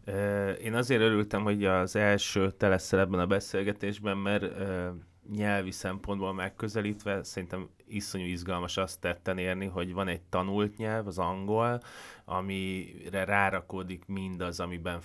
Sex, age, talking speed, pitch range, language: male, 30-49, 125 wpm, 90-105 Hz, Hungarian